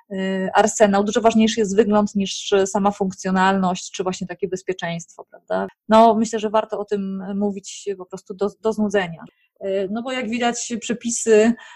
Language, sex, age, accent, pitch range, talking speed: Polish, female, 20-39, native, 185-220 Hz, 155 wpm